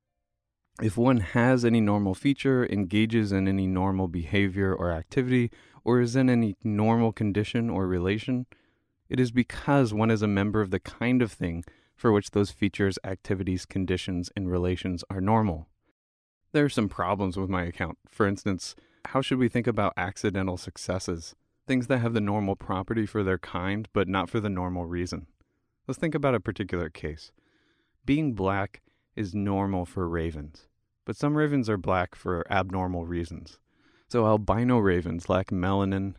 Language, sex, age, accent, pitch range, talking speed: English, male, 20-39, American, 90-110 Hz, 165 wpm